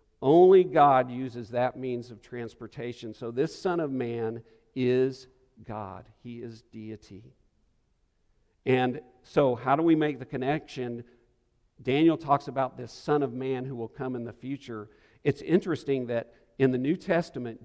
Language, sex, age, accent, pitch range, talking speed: English, male, 50-69, American, 115-140 Hz, 155 wpm